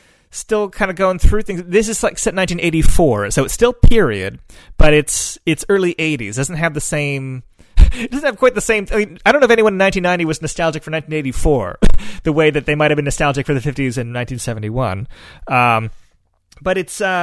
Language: English